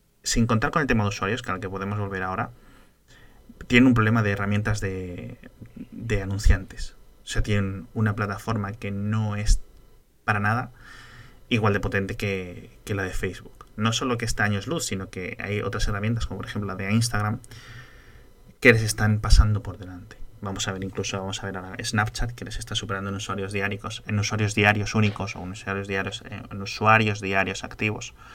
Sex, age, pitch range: male, 20-39, 95-115 Hz